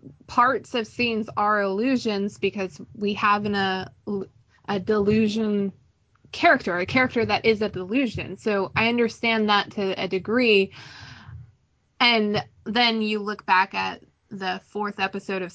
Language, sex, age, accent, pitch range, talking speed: English, female, 20-39, American, 195-230 Hz, 135 wpm